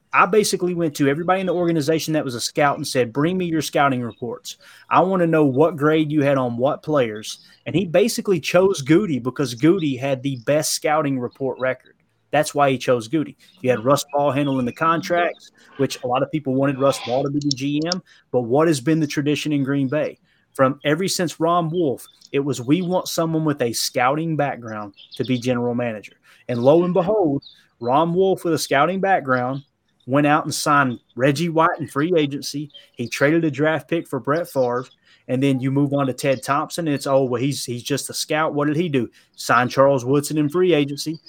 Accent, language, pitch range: American, English, 130-160 Hz